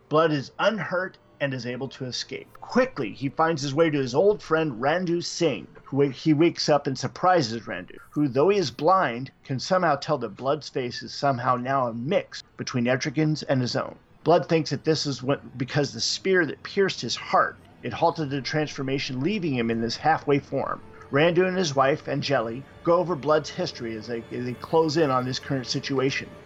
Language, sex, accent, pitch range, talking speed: English, male, American, 125-160 Hz, 200 wpm